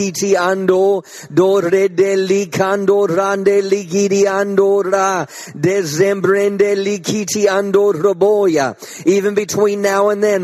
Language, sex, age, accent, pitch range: English, male, 50-69, American, 200-225 Hz